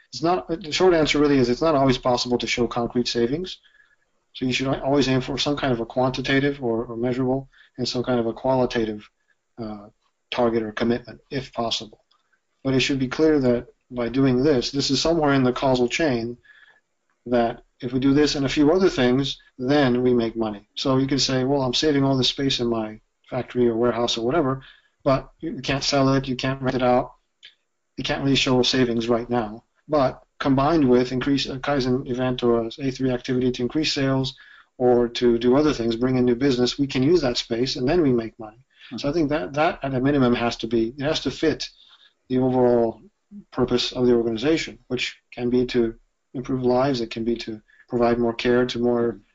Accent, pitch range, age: American, 120-135 Hz, 40-59